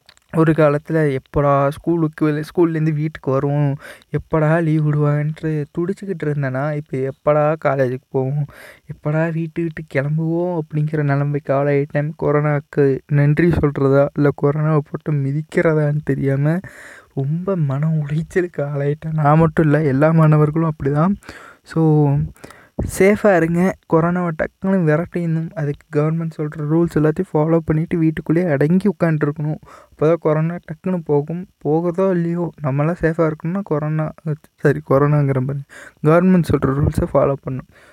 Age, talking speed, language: 20-39, 120 wpm, Tamil